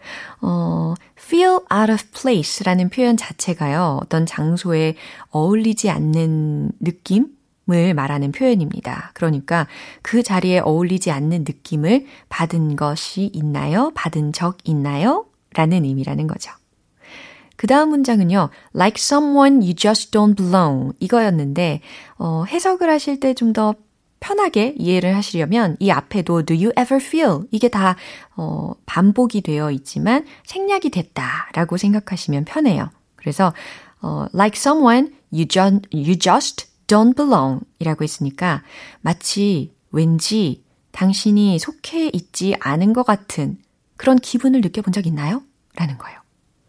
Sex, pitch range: female, 165-235 Hz